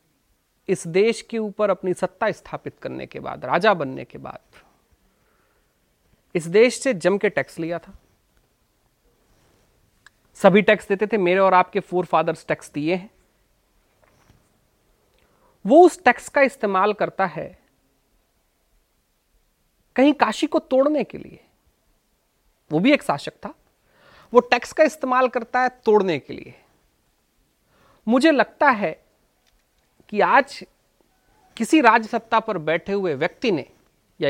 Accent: native